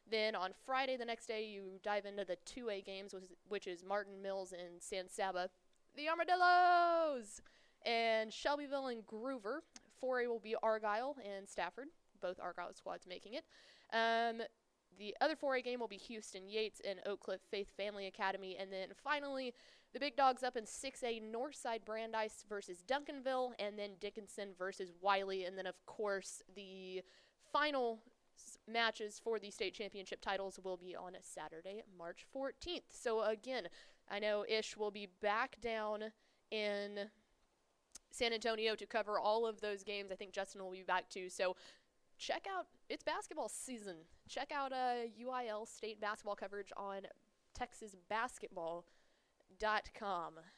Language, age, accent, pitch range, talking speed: English, 20-39, American, 195-250 Hz, 155 wpm